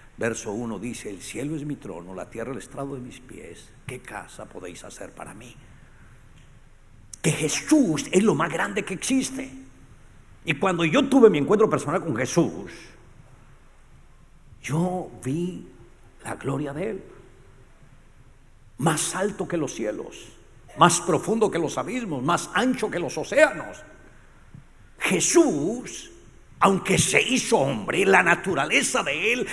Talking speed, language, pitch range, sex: 140 wpm, English, 130-190 Hz, male